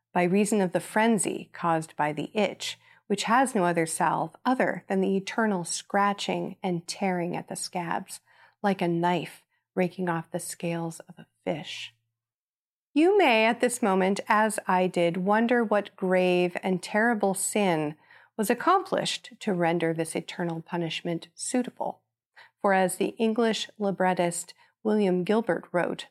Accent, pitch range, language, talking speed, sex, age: American, 175-220 Hz, English, 145 wpm, female, 40-59